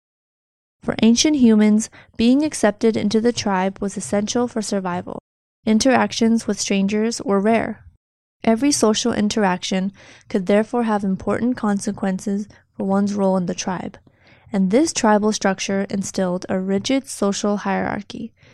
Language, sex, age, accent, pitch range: Chinese, female, 20-39, American, 195-230 Hz